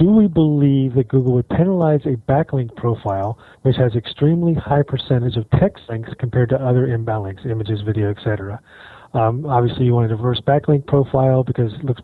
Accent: American